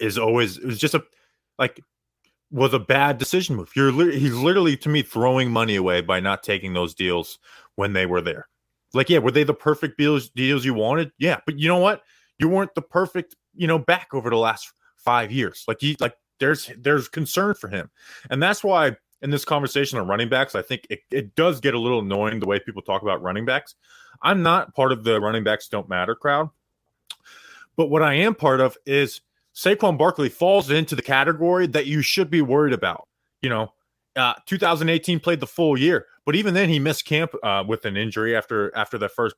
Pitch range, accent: 125-165 Hz, American